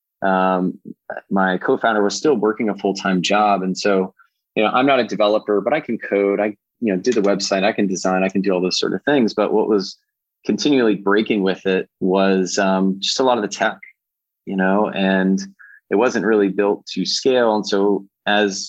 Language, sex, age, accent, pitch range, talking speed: English, male, 20-39, American, 95-110 Hz, 210 wpm